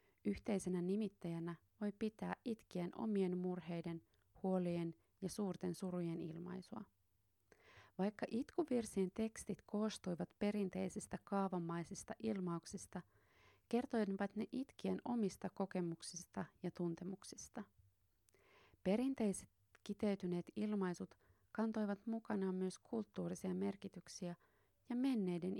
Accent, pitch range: native, 175-210 Hz